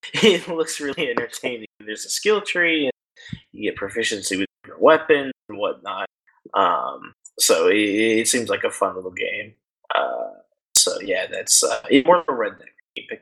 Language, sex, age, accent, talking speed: English, male, 20-39, American, 170 wpm